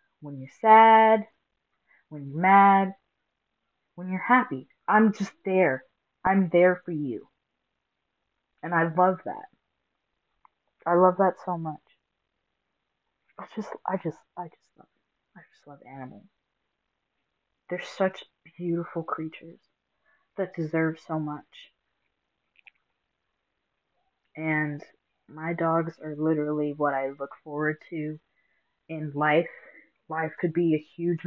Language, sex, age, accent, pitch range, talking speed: English, female, 30-49, American, 155-185 Hz, 115 wpm